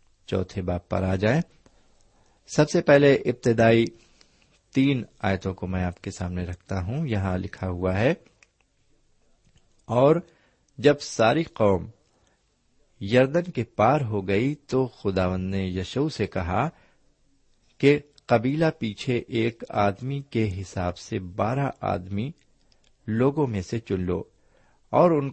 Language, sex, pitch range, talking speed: Urdu, male, 95-135 Hz, 125 wpm